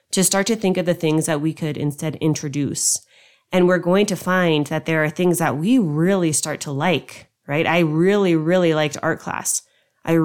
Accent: American